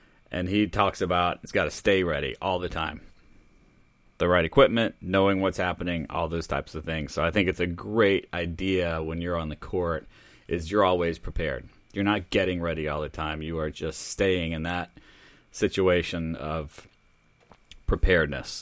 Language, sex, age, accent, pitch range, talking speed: English, male, 30-49, American, 85-95 Hz, 175 wpm